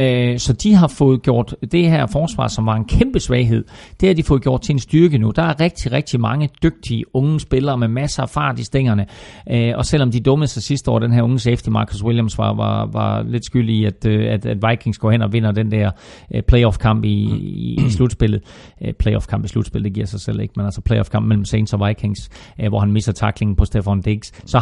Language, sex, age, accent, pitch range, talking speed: Danish, male, 40-59, native, 110-150 Hz, 225 wpm